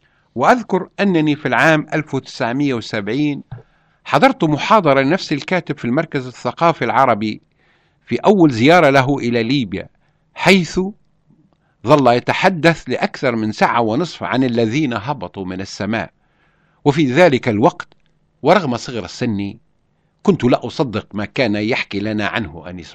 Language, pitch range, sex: Arabic, 110-155 Hz, male